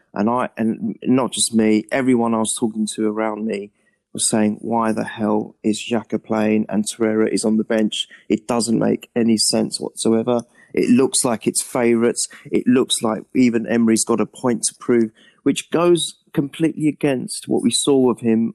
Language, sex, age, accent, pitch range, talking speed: English, male, 30-49, British, 110-140 Hz, 185 wpm